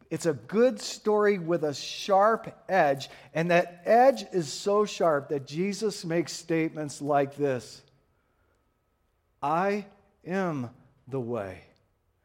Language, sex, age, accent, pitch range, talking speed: English, male, 40-59, American, 150-225 Hz, 120 wpm